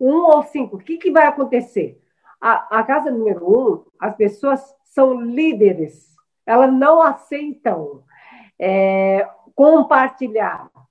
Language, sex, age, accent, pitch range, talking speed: Portuguese, female, 50-69, Brazilian, 235-300 Hz, 115 wpm